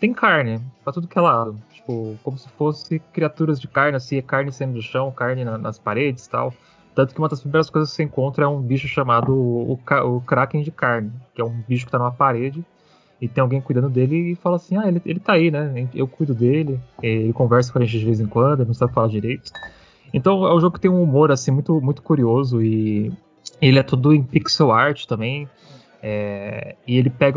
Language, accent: Portuguese, Brazilian